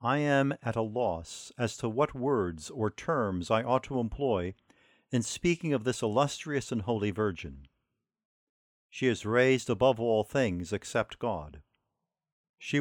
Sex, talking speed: male, 150 wpm